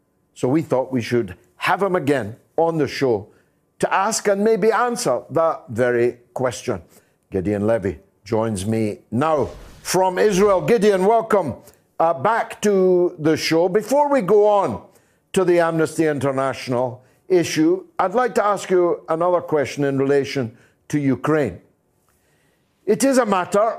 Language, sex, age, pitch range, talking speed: English, male, 60-79, 145-220 Hz, 145 wpm